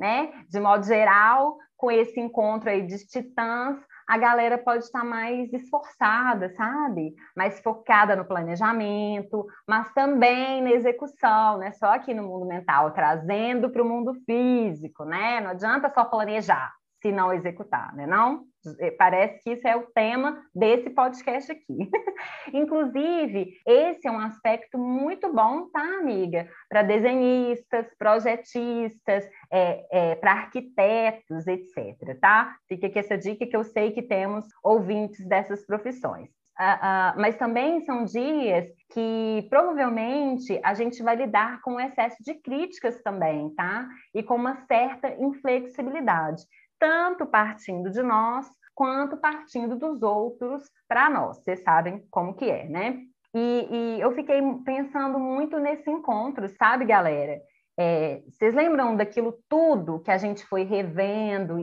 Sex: female